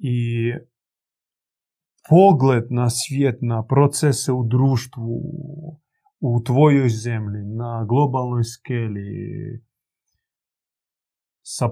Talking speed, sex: 75 wpm, male